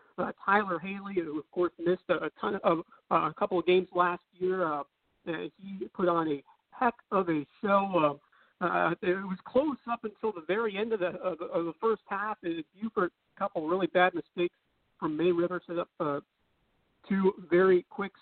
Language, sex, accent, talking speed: English, male, American, 200 wpm